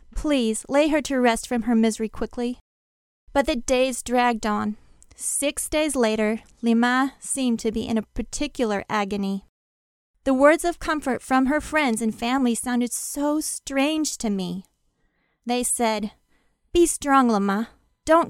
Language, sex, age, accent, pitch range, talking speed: English, female, 30-49, American, 215-270 Hz, 150 wpm